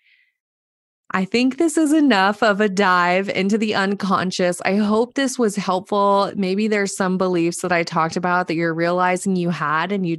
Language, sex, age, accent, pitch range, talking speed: English, female, 20-39, American, 165-190 Hz, 185 wpm